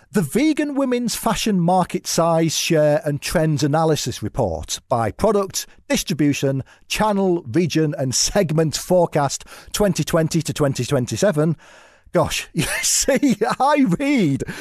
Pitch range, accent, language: 145-205 Hz, British, English